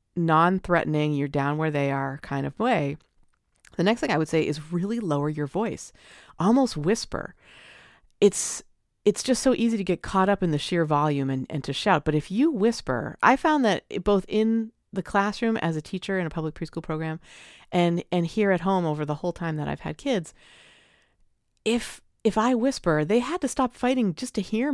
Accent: American